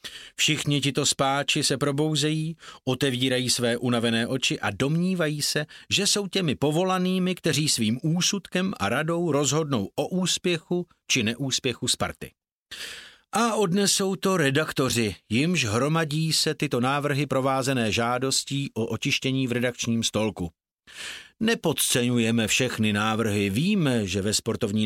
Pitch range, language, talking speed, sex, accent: 120-175 Hz, Czech, 120 wpm, male, native